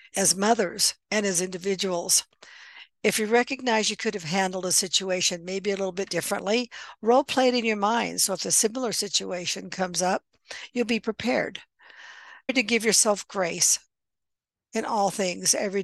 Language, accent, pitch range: English, American, 185-225 Hz